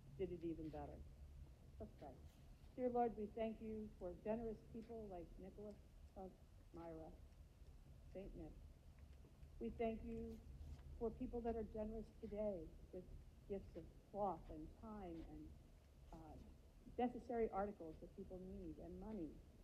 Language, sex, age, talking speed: English, female, 50-69, 130 wpm